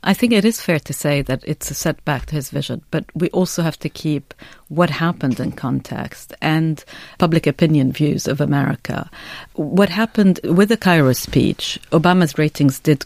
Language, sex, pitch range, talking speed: English, female, 140-170 Hz, 180 wpm